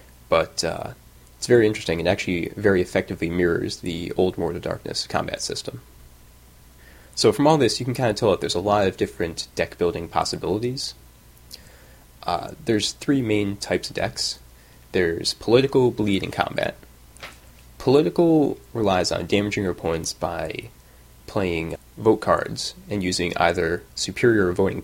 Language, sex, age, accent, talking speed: English, male, 20-39, American, 145 wpm